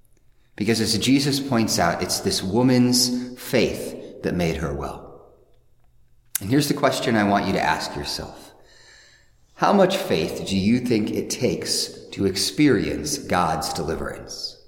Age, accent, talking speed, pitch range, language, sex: 30-49, American, 145 wpm, 100-135 Hz, English, male